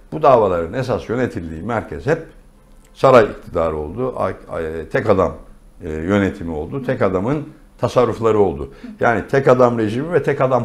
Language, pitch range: Turkish, 85-110 Hz